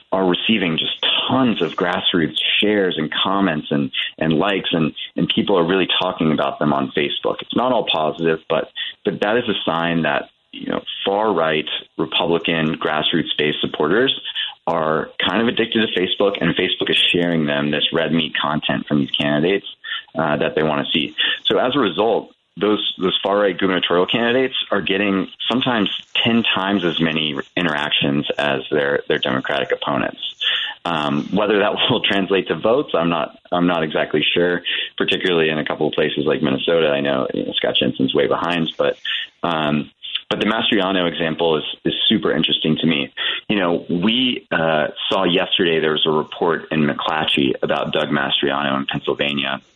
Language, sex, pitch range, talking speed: English, male, 75-105 Hz, 170 wpm